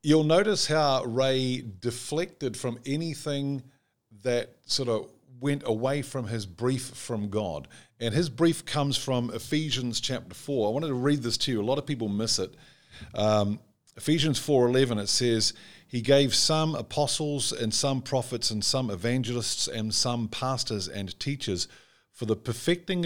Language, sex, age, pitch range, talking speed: English, male, 50-69, 105-135 Hz, 160 wpm